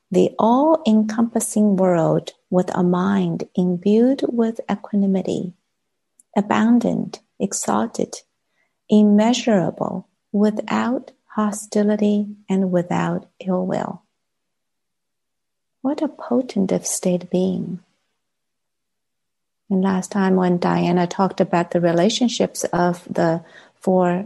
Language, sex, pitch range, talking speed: English, female, 180-225 Hz, 90 wpm